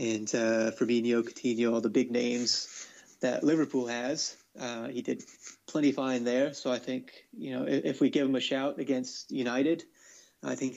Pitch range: 125-145 Hz